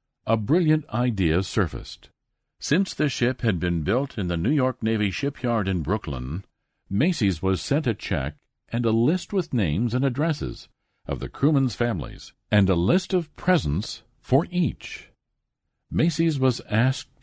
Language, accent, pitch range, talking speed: English, American, 100-140 Hz, 155 wpm